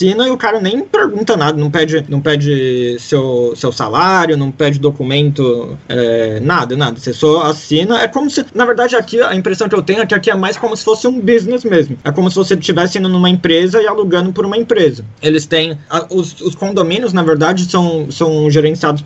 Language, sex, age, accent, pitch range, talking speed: Portuguese, male, 20-39, Brazilian, 140-185 Hz, 215 wpm